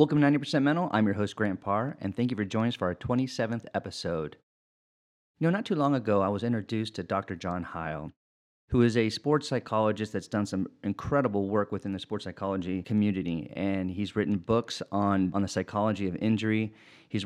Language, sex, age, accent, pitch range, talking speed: English, male, 30-49, American, 100-125 Hz, 200 wpm